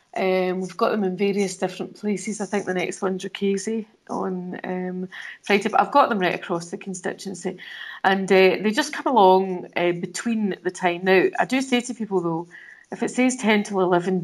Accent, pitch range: British, 180-215 Hz